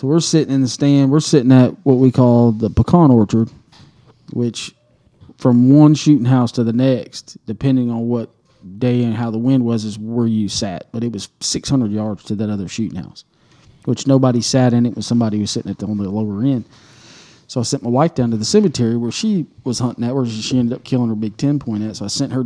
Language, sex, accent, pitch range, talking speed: English, male, American, 110-135 Hz, 230 wpm